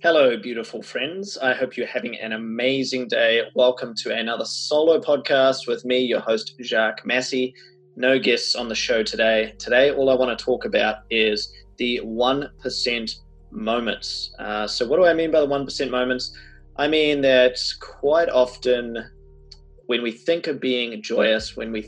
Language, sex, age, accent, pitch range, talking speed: English, male, 20-39, Australian, 115-135 Hz, 165 wpm